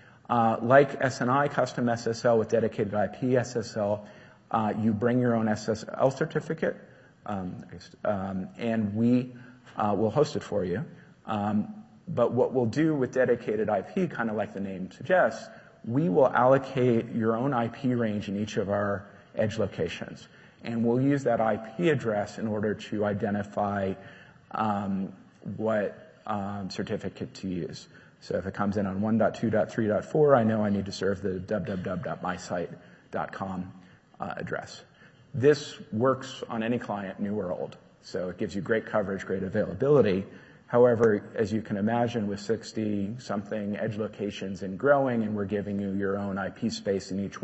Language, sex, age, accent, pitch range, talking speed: English, male, 40-59, American, 100-120 Hz, 155 wpm